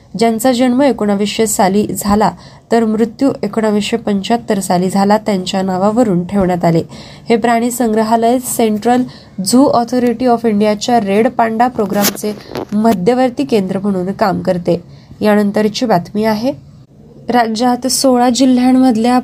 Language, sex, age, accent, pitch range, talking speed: Marathi, female, 20-39, native, 200-240 Hz, 110 wpm